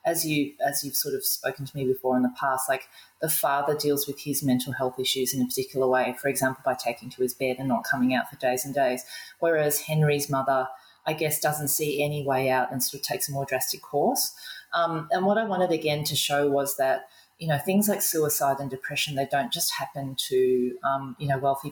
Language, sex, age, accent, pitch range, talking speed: English, female, 30-49, Australian, 135-160 Hz, 235 wpm